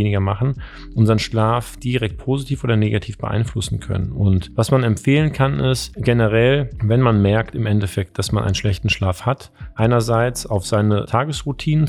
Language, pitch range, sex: German, 100-125 Hz, male